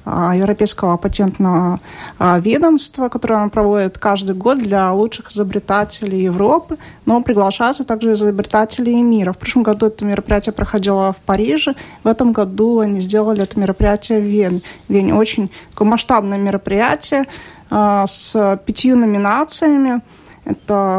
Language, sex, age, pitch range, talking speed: Russian, female, 30-49, 200-235 Hz, 115 wpm